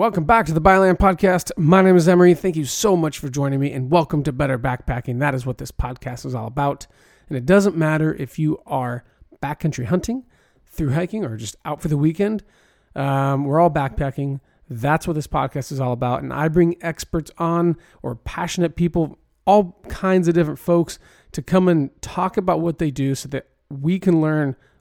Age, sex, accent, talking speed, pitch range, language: 30-49, male, American, 205 wpm, 135-175 Hz, English